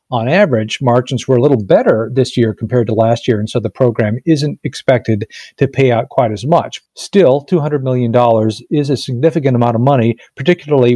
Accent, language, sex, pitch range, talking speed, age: American, English, male, 115-140 Hz, 190 wpm, 50-69